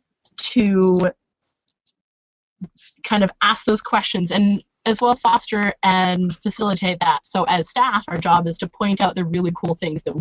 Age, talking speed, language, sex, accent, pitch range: 20-39, 160 wpm, English, female, American, 180-230 Hz